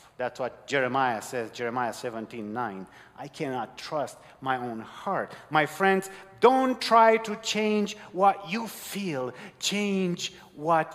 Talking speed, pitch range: 130 wpm, 125-195 Hz